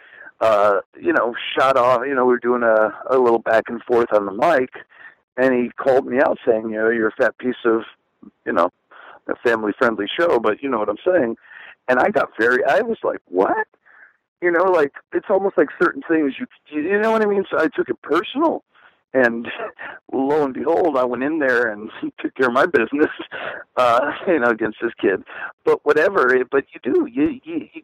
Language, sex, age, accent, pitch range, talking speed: English, male, 50-69, American, 120-200 Hz, 210 wpm